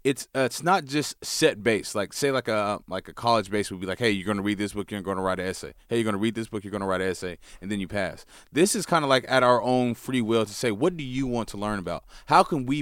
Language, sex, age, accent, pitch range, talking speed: English, male, 20-39, American, 105-140 Hz, 325 wpm